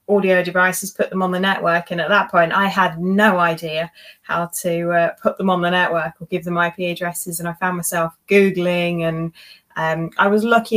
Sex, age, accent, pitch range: female, 20-39, British, 170-190 Hz